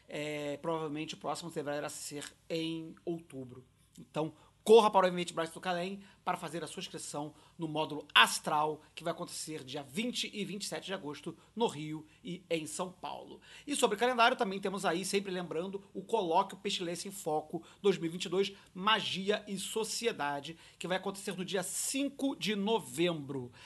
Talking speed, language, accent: 165 wpm, Portuguese, Brazilian